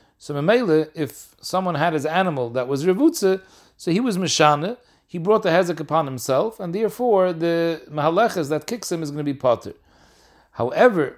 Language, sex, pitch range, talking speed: English, male, 135-190 Hz, 175 wpm